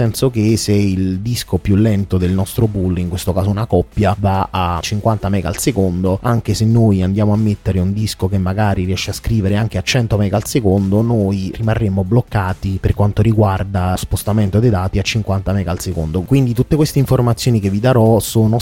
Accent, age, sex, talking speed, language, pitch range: native, 30-49, male, 200 wpm, Italian, 95-115 Hz